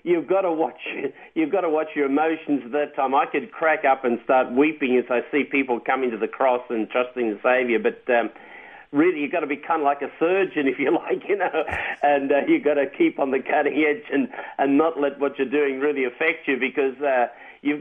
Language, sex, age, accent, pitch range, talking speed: English, male, 50-69, Australian, 135-180 Hz, 245 wpm